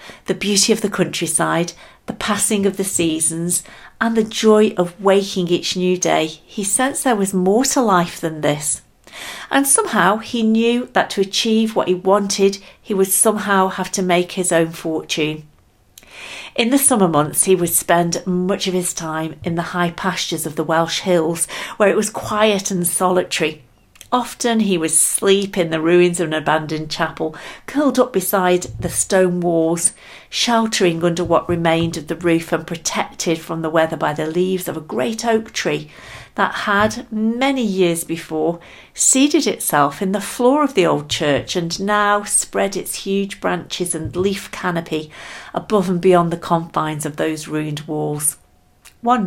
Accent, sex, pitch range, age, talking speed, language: British, female, 165-205 Hz, 50-69, 170 wpm, English